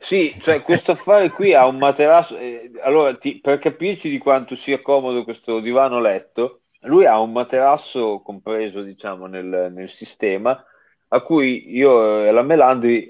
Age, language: 30-49, Italian